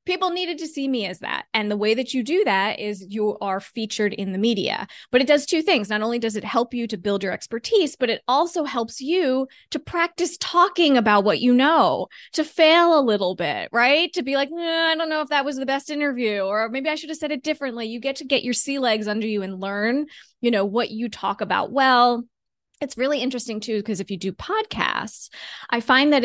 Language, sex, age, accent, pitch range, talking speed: English, female, 20-39, American, 210-280 Hz, 240 wpm